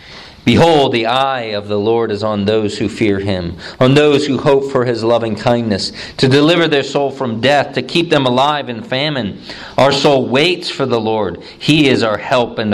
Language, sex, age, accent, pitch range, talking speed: English, male, 40-59, American, 105-130 Hz, 205 wpm